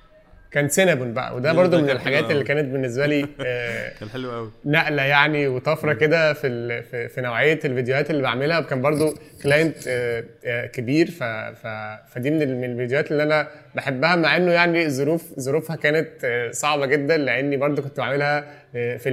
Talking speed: 150 wpm